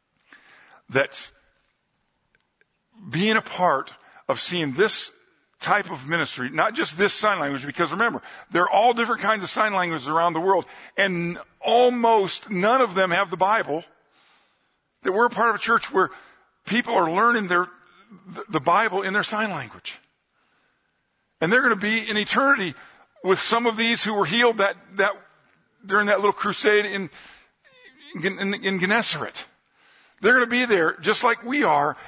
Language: English